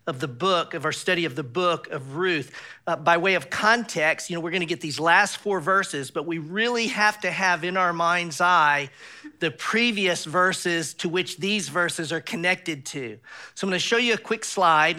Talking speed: 210 wpm